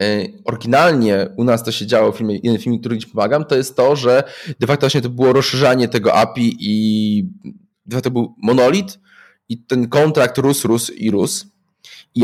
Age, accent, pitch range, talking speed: 20-39, native, 115-145 Hz, 190 wpm